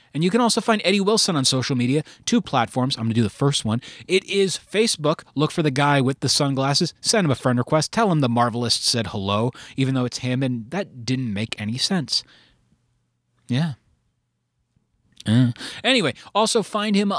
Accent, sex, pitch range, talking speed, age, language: American, male, 125-180 Hz, 195 wpm, 30-49, English